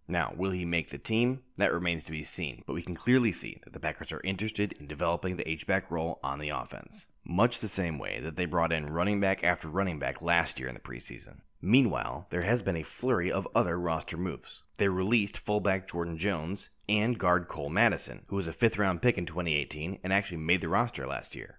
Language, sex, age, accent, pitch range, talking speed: English, male, 20-39, American, 80-100 Hz, 220 wpm